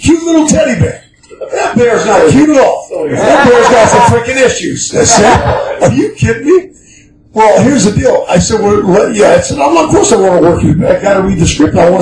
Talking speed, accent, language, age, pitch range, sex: 230 wpm, American, English, 50-69, 185-275 Hz, male